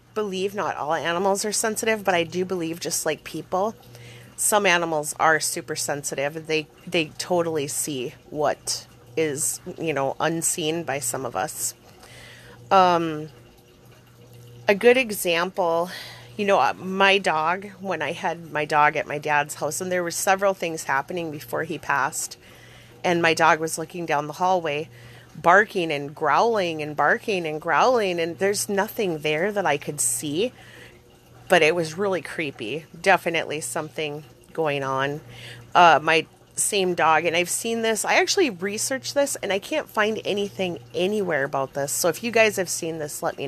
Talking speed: 165 wpm